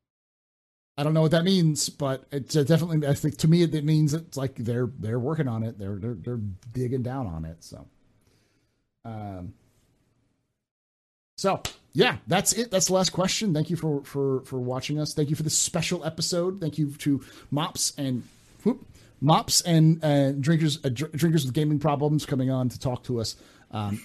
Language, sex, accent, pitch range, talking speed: English, male, American, 115-155 Hz, 180 wpm